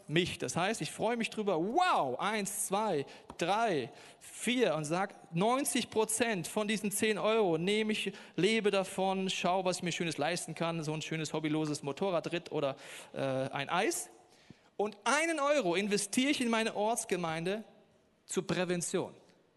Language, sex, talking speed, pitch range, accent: German, male, 155 wpm, 155-215 Hz, German